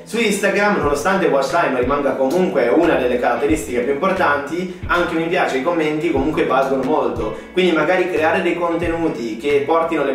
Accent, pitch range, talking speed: native, 140-175 Hz, 175 wpm